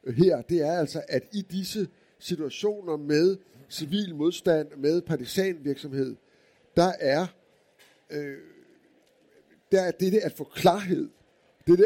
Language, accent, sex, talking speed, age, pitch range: Danish, native, male, 115 wpm, 60-79, 155-200 Hz